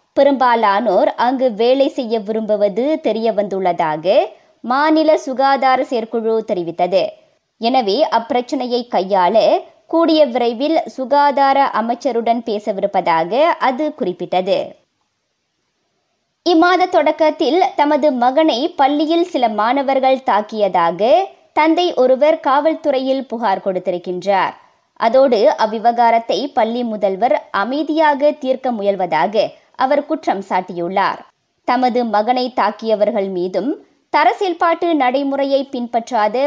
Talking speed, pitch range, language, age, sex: 75 wpm, 215-310 Hz, Tamil, 20-39, male